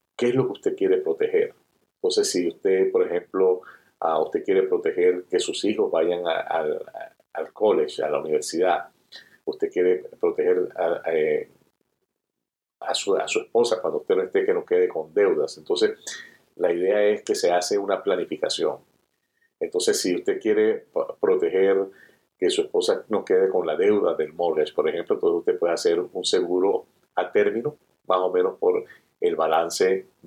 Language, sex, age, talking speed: Spanish, male, 50-69, 160 wpm